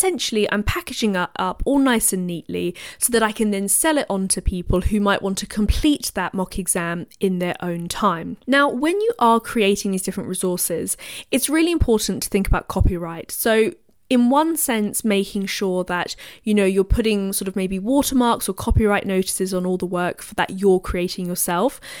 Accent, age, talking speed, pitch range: British, 20-39, 195 wpm, 180-220 Hz